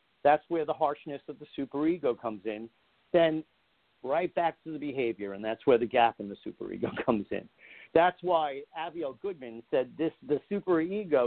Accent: American